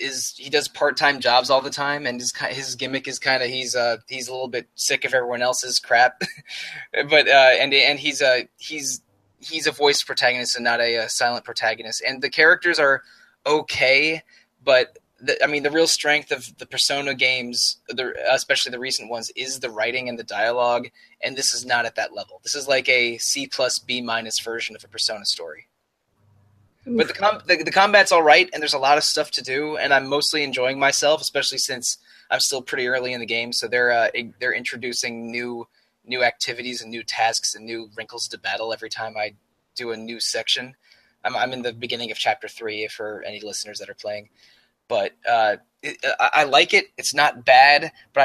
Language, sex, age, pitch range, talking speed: English, male, 20-39, 115-140 Hz, 210 wpm